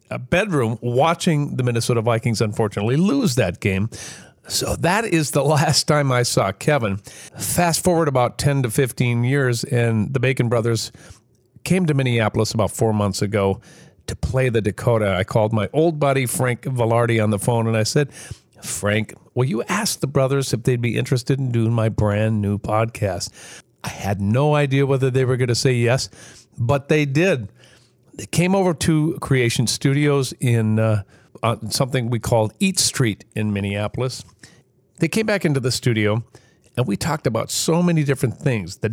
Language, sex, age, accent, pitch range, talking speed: English, male, 50-69, American, 115-150 Hz, 175 wpm